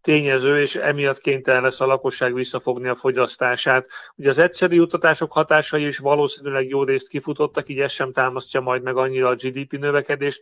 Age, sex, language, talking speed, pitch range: 40-59, male, Hungarian, 175 wpm, 130-155 Hz